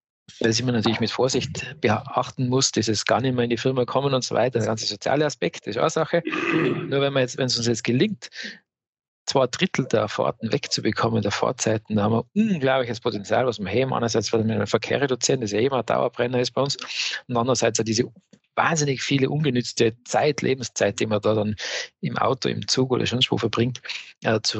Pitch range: 110-130 Hz